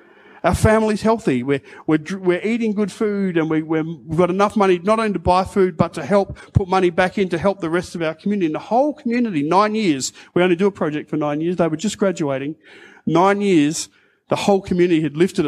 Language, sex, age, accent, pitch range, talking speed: English, male, 40-59, Australian, 160-215 Hz, 230 wpm